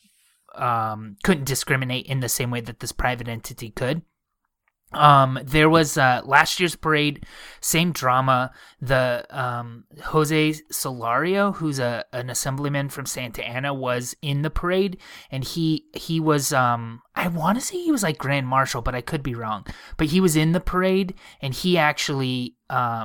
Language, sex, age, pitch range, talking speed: English, male, 30-49, 125-155 Hz, 170 wpm